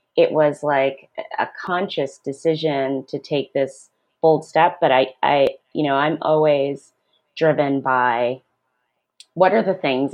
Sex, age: female, 30-49